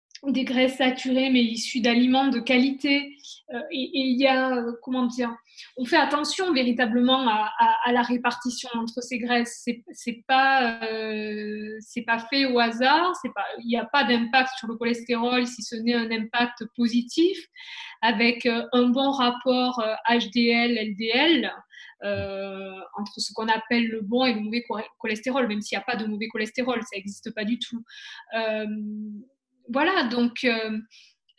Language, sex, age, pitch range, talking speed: French, female, 20-39, 225-270 Hz, 160 wpm